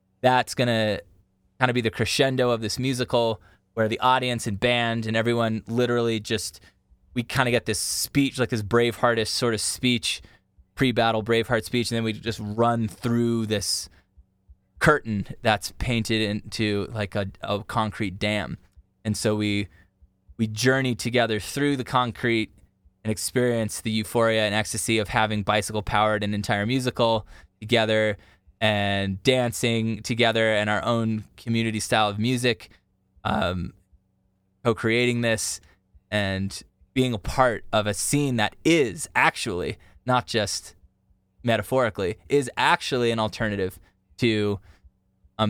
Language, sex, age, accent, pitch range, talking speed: English, male, 20-39, American, 95-120 Hz, 140 wpm